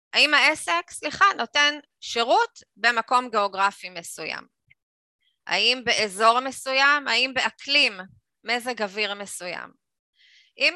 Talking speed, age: 95 wpm, 20-39